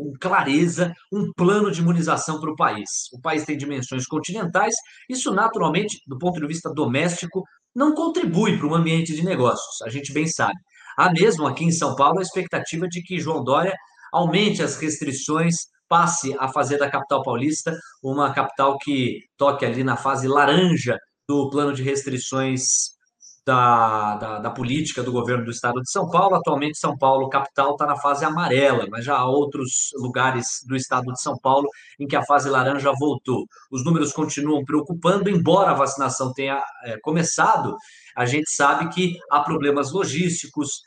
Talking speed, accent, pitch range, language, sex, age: 170 wpm, Brazilian, 135-165 Hz, Portuguese, male, 20-39